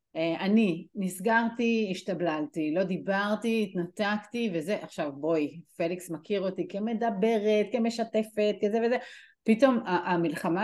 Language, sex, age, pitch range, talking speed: Hebrew, female, 30-49, 175-220 Hz, 100 wpm